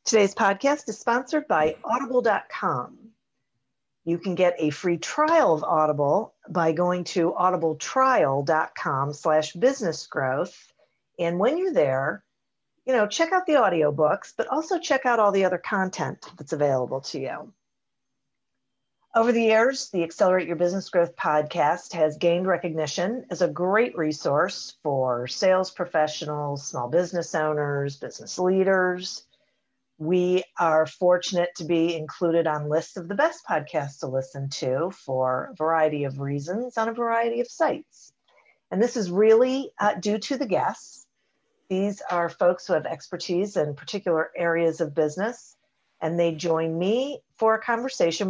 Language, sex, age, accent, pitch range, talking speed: English, female, 50-69, American, 155-225 Hz, 145 wpm